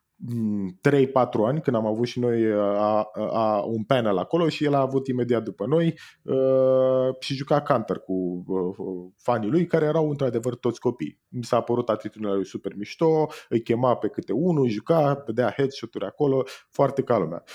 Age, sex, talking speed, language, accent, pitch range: 20-39, male, 170 wpm, Romanian, native, 105-145 Hz